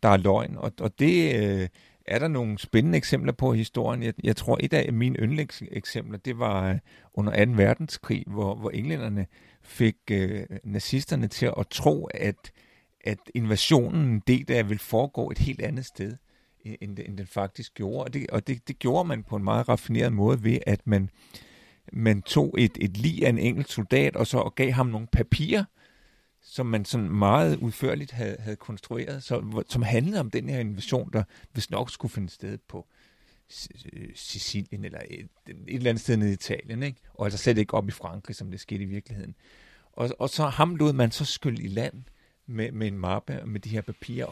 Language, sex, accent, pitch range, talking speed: Danish, male, native, 100-130 Hz, 195 wpm